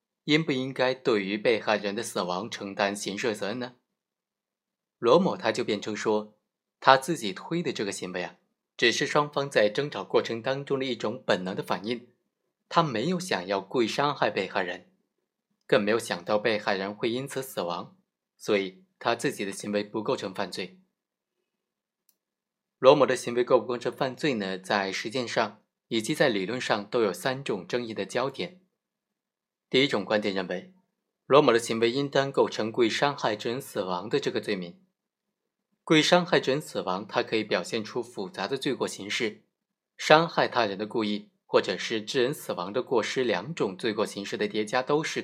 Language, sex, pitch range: Chinese, male, 105-155 Hz